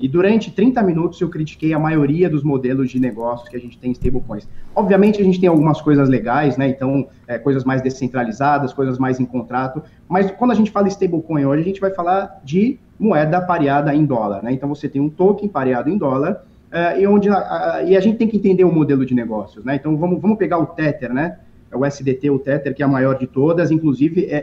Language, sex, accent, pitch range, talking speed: Portuguese, male, Brazilian, 140-195 Hz, 235 wpm